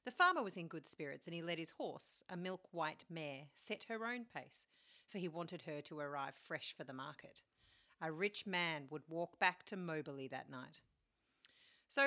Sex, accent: female, Australian